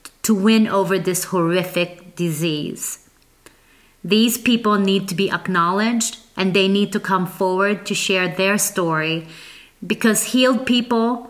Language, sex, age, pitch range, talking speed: English, female, 30-49, 180-220 Hz, 135 wpm